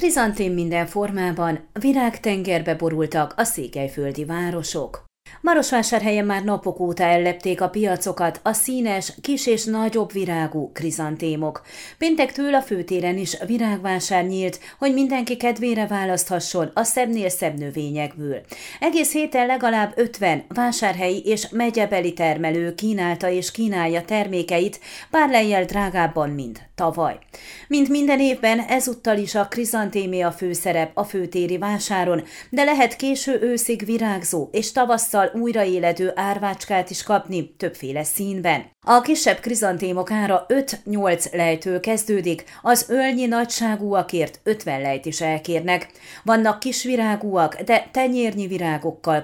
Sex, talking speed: female, 115 wpm